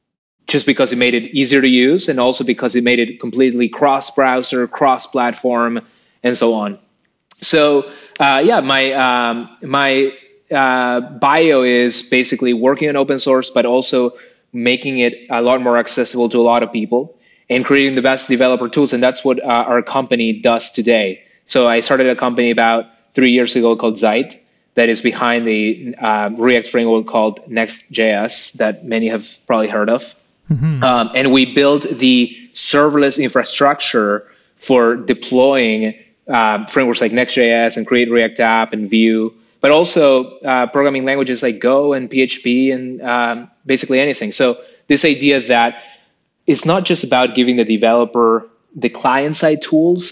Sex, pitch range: male, 115-135 Hz